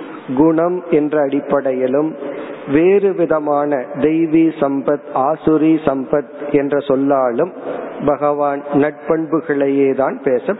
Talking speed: 80 wpm